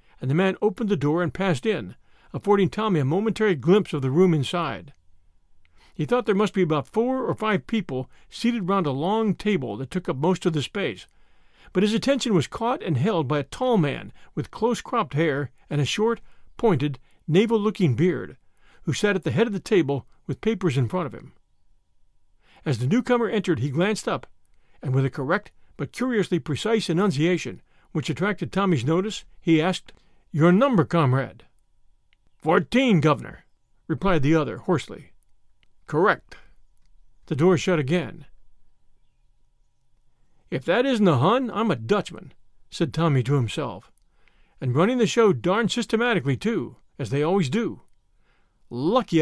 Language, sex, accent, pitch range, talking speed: English, male, American, 145-210 Hz, 165 wpm